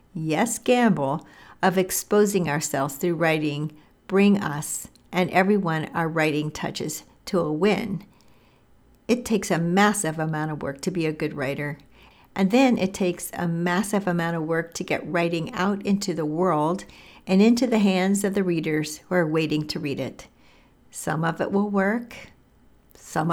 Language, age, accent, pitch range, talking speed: English, 60-79, American, 160-195 Hz, 165 wpm